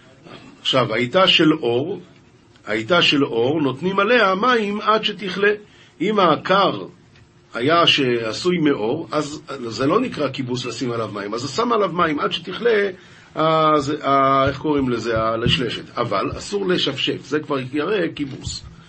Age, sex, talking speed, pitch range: 50-69, male, 140 wpm, 135-180 Hz